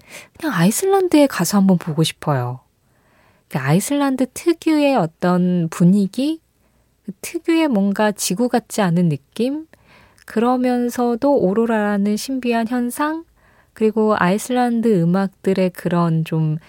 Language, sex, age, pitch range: Korean, female, 20-39, 160-230 Hz